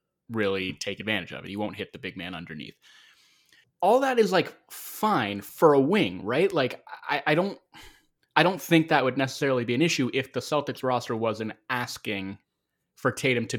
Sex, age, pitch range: male, 20-39, 105-135 Hz